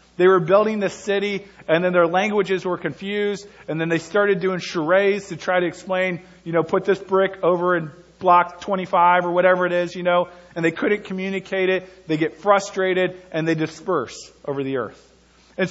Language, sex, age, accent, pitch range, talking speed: English, male, 40-59, American, 160-195 Hz, 195 wpm